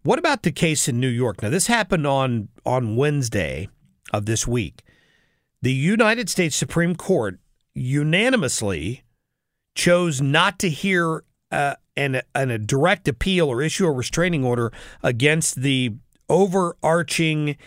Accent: American